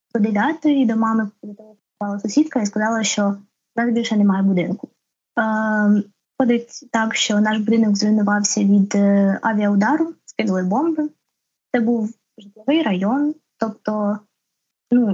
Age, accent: 20-39, native